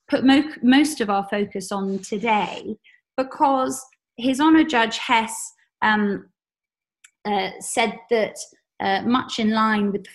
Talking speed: 130 wpm